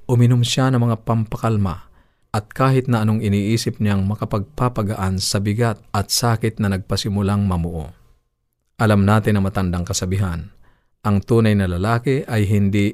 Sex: male